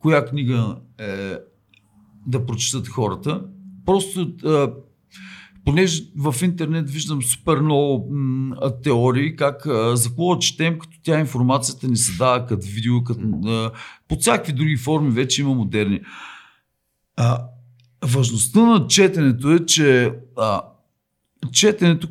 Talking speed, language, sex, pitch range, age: 120 wpm, Bulgarian, male, 120-155 Hz, 50-69